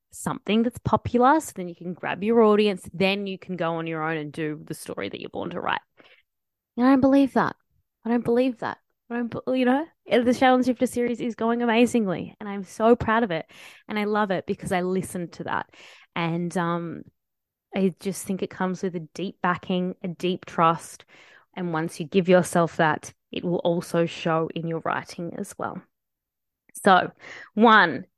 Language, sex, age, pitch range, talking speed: English, female, 20-39, 180-245 Hz, 200 wpm